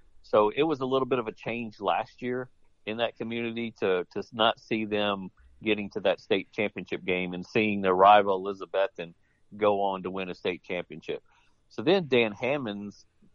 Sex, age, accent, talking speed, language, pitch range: male, 50-69, American, 185 wpm, English, 100-115 Hz